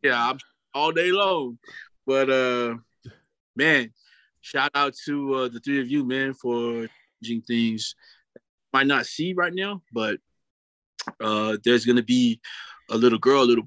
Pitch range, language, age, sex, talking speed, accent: 115-135 Hz, English, 20-39, male, 155 wpm, American